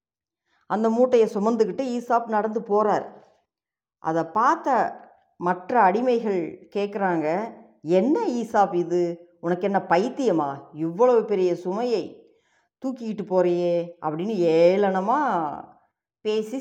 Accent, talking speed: native, 90 wpm